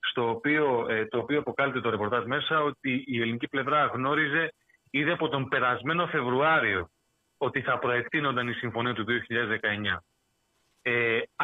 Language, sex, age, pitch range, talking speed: Greek, male, 30-49, 120-165 Hz, 125 wpm